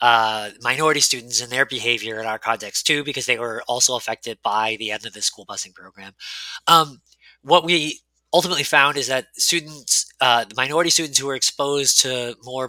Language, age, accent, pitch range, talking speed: English, 20-39, American, 120-150 Hz, 190 wpm